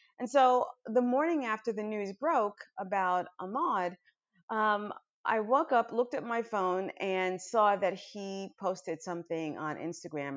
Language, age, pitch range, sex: English, 40-59, 165-245 Hz, female